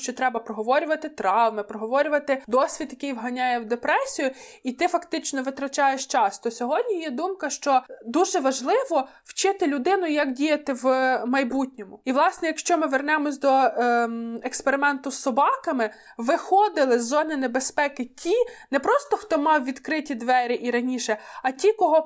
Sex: female